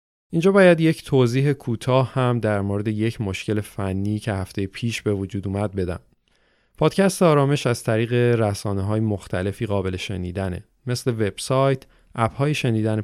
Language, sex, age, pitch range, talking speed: Persian, male, 30-49, 100-130 Hz, 140 wpm